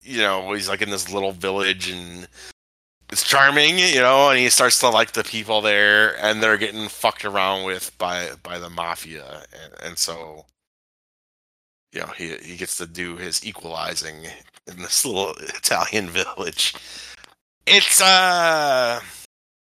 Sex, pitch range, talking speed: male, 85-120 Hz, 150 wpm